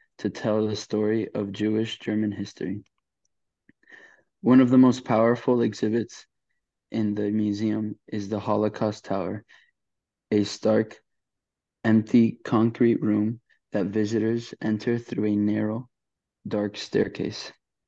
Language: English